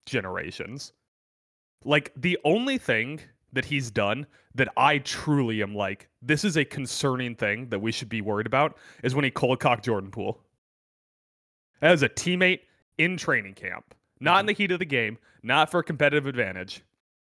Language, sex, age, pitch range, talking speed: English, male, 30-49, 115-165 Hz, 170 wpm